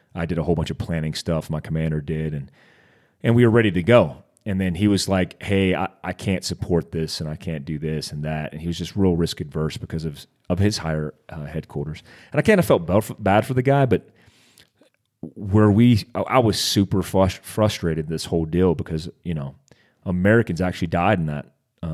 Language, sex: English, male